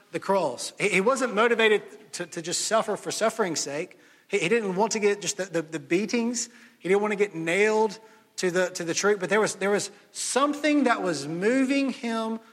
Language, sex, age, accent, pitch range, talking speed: English, male, 30-49, American, 200-275 Hz, 215 wpm